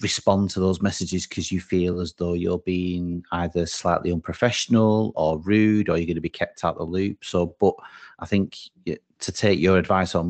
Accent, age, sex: British, 30-49, male